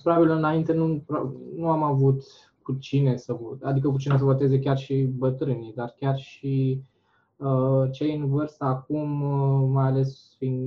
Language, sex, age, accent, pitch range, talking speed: Romanian, male, 20-39, native, 130-170 Hz, 170 wpm